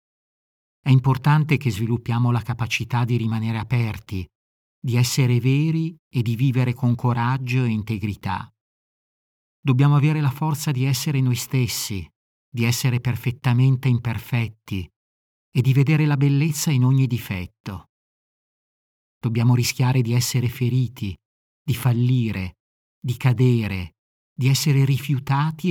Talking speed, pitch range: 120 wpm, 115-135 Hz